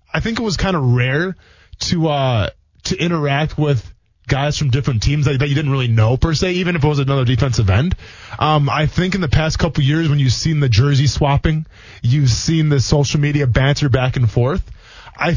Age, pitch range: 20-39, 120-150 Hz